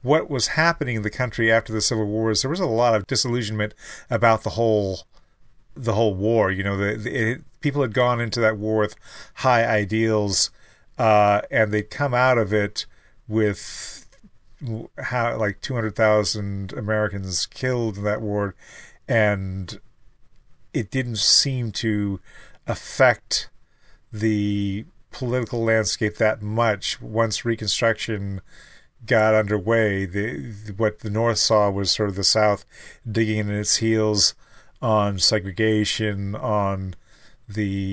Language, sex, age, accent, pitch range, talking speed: English, male, 40-59, American, 105-115 Hz, 140 wpm